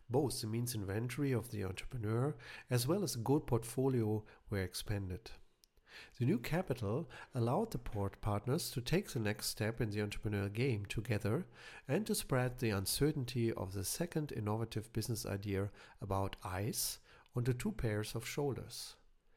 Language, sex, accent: English, male, German